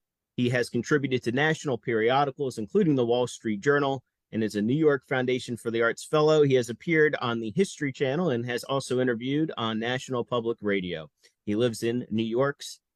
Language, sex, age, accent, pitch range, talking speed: English, male, 30-49, American, 105-130 Hz, 190 wpm